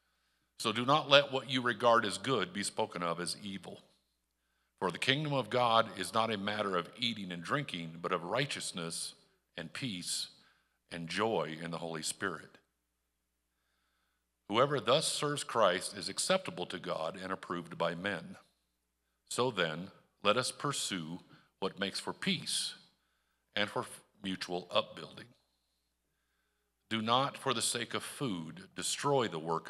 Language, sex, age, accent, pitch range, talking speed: English, male, 50-69, American, 80-130 Hz, 150 wpm